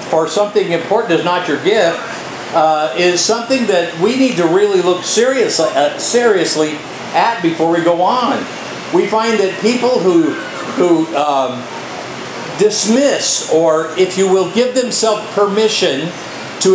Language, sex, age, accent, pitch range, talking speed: English, male, 50-69, American, 165-240 Hz, 135 wpm